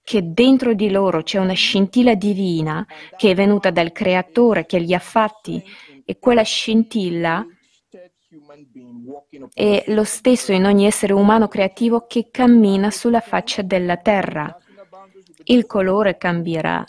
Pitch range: 180-225 Hz